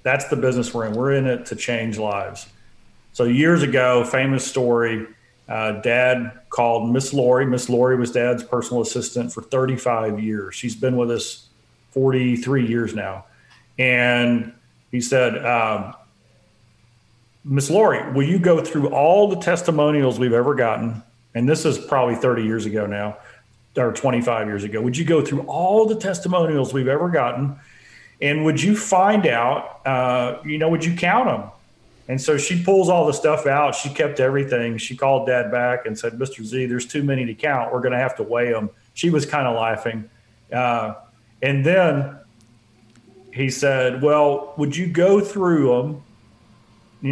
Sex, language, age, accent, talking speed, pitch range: male, English, 40-59, American, 170 wpm, 115-145 Hz